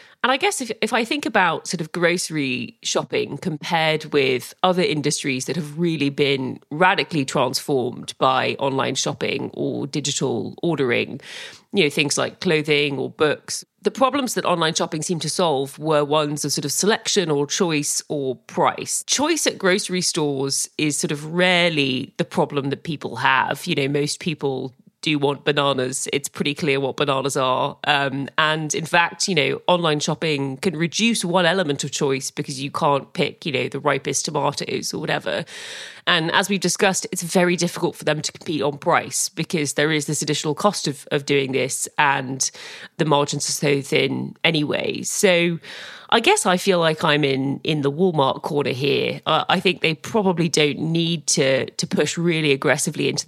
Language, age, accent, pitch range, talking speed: English, 30-49, British, 145-180 Hz, 180 wpm